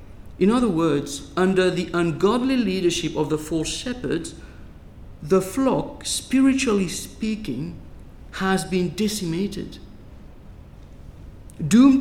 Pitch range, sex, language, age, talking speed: 155-225 Hz, male, English, 50-69, 95 wpm